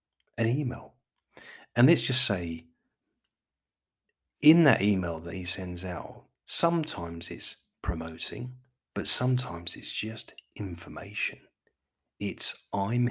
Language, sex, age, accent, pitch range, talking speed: English, male, 40-59, British, 85-110 Hz, 105 wpm